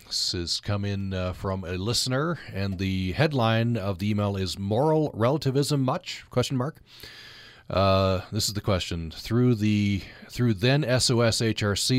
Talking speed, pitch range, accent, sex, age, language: 150 wpm, 95-120 Hz, American, male, 40-59, English